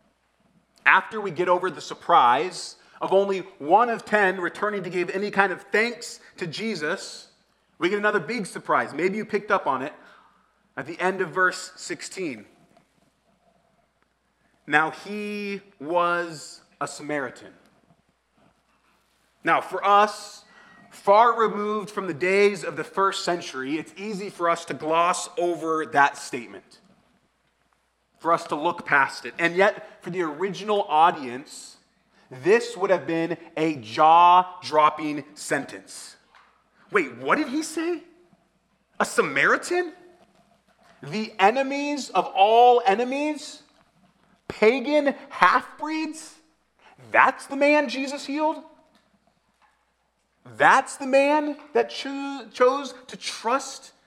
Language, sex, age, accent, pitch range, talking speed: English, male, 30-49, American, 175-260 Hz, 120 wpm